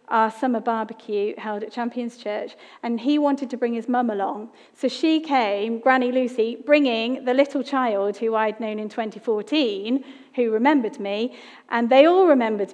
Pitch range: 220-270 Hz